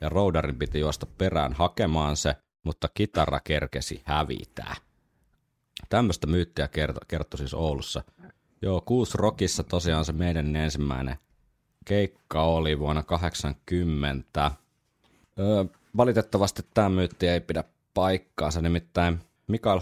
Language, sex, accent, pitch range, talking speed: Finnish, male, native, 75-95 Hz, 110 wpm